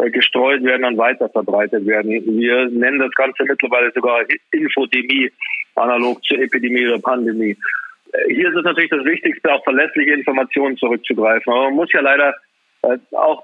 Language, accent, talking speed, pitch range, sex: German, German, 145 wpm, 125-145 Hz, male